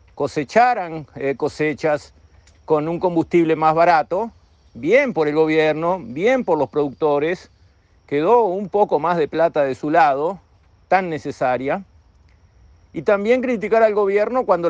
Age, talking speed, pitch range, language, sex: 50-69, 130 wpm, 135-190 Hz, Spanish, male